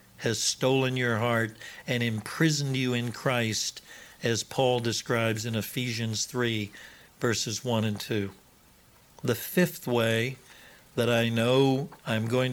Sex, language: male, English